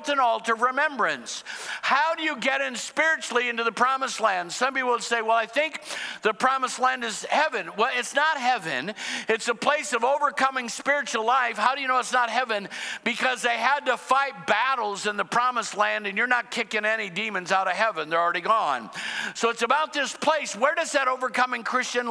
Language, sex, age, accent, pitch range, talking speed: English, male, 50-69, American, 215-265 Hz, 205 wpm